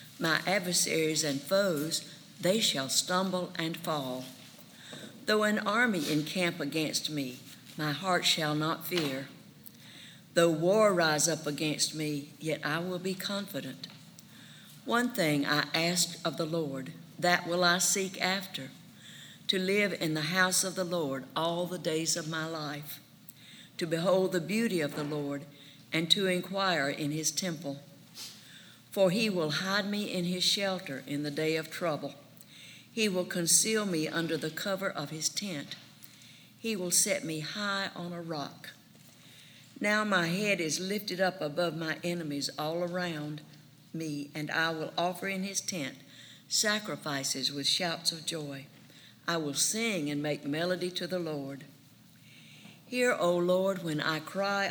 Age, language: 60-79, English